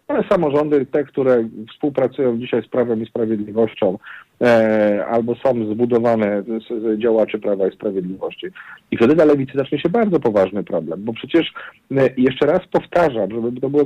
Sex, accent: male, native